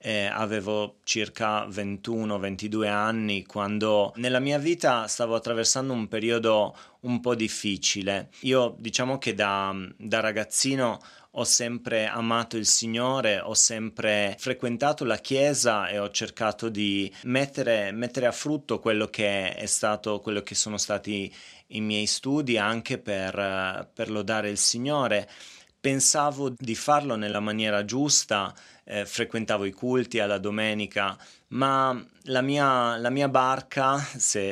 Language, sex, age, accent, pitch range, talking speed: Italian, male, 30-49, native, 105-120 Hz, 130 wpm